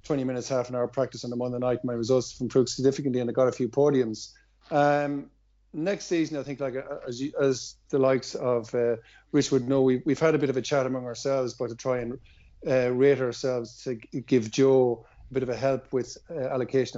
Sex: male